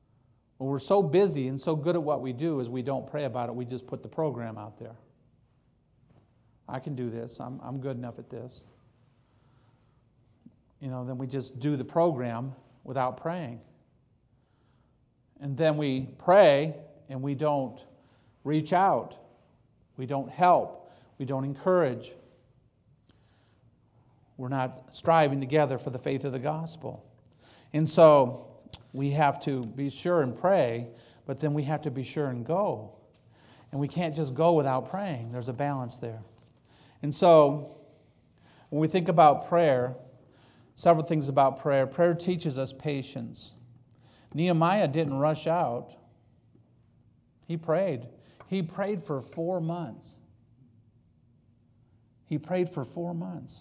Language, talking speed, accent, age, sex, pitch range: English, 145 wpm, American, 50-69, male, 125-150 Hz